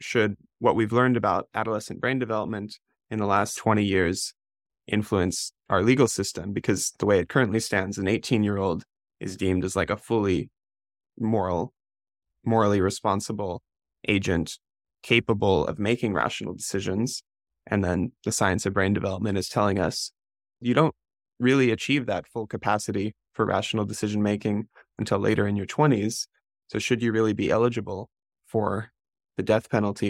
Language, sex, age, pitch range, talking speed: English, male, 20-39, 100-115 Hz, 150 wpm